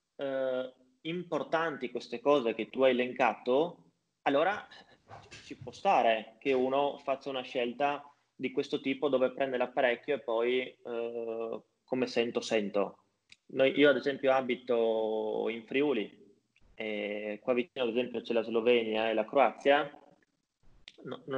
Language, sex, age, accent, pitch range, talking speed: Italian, male, 20-39, native, 120-160 Hz, 140 wpm